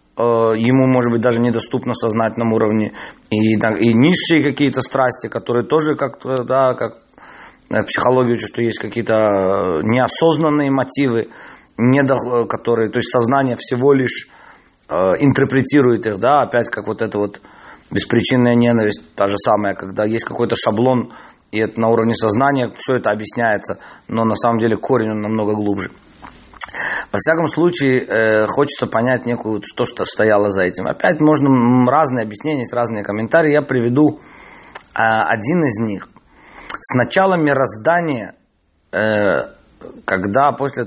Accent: native